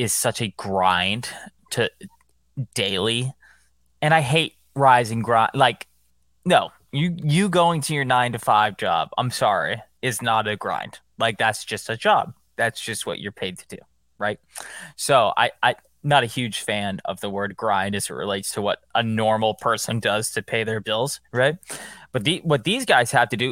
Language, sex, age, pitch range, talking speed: English, male, 20-39, 105-135 Hz, 190 wpm